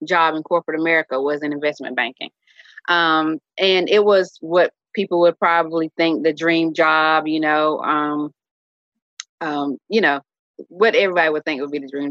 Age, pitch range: 20-39, 155-175 Hz